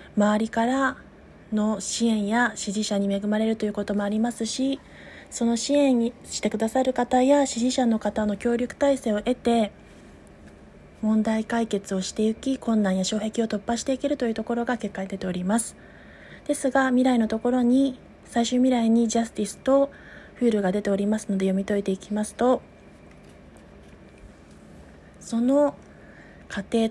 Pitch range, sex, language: 205-245 Hz, female, Japanese